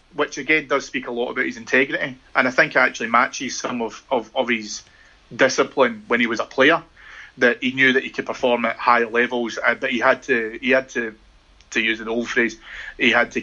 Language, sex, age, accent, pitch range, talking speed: English, male, 30-49, British, 115-140 Hz, 225 wpm